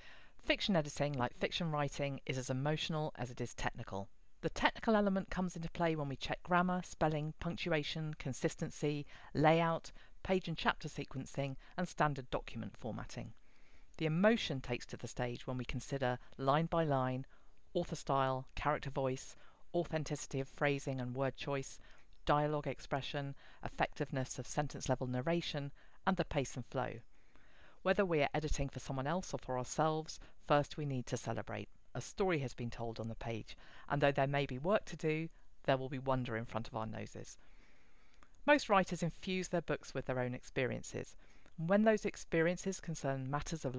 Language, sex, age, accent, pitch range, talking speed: English, female, 40-59, British, 130-165 Hz, 170 wpm